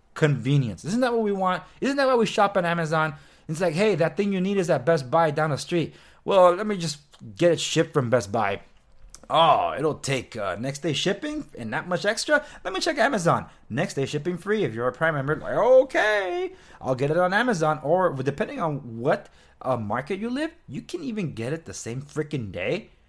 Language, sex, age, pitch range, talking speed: English, male, 20-39, 125-190 Hz, 220 wpm